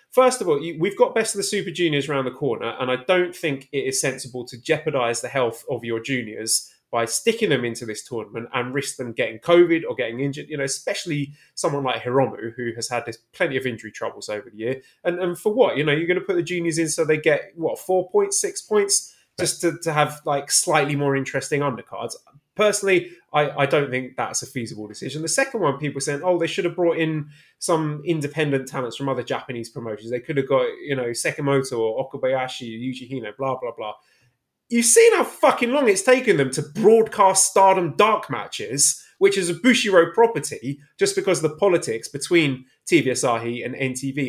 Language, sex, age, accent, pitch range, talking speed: English, male, 20-39, British, 130-190 Hz, 210 wpm